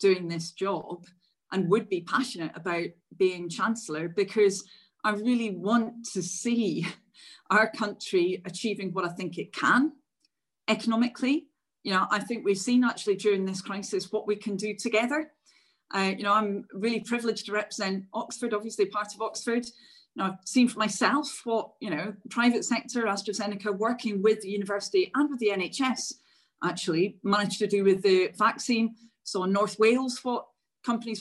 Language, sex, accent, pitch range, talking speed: English, female, British, 195-245 Hz, 165 wpm